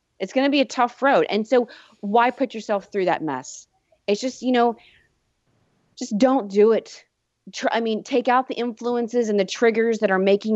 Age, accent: 30-49, American